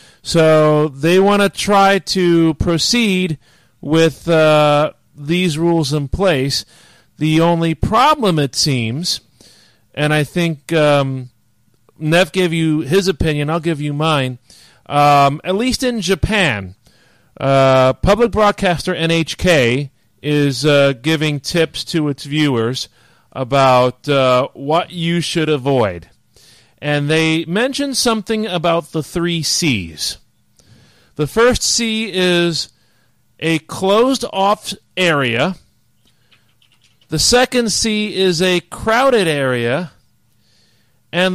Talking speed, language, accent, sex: 110 wpm, English, American, male